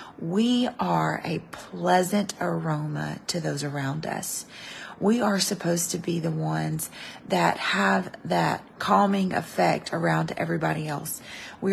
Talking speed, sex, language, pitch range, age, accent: 130 wpm, female, English, 165-195 Hz, 30-49, American